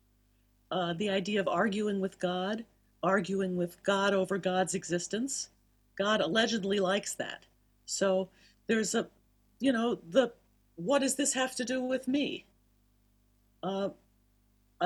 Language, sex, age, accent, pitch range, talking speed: English, female, 50-69, American, 170-215 Hz, 130 wpm